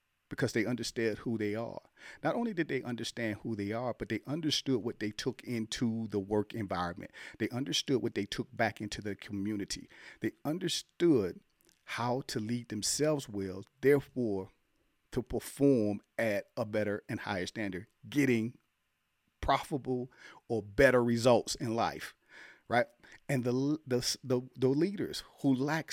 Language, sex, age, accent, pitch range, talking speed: English, male, 40-59, American, 100-130 Hz, 150 wpm